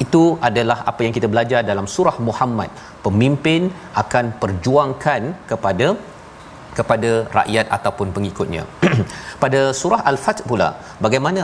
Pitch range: 115-140 Hz